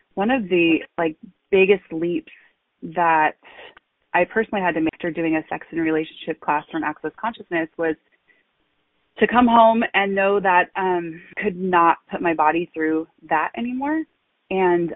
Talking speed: 155 wpm